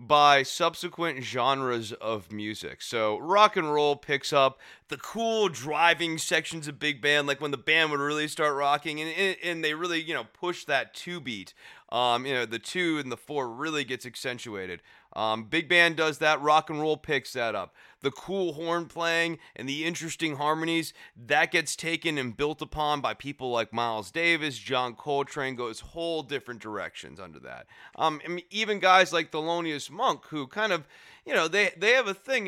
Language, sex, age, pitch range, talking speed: English, male, 30-49, 130-170 Hz, 190 wpm